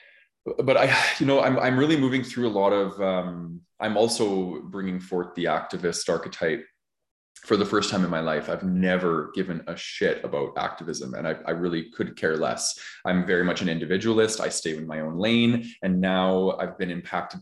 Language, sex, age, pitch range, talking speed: English, male, 20-39, 85-110 Hz, 195 wpm